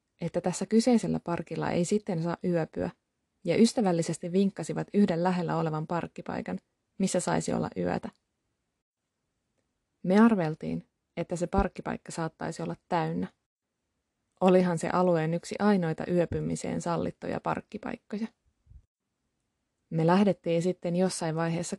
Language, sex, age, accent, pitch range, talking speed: Finnish, female, 20-39, native, 170-205 Hz, 110 wpm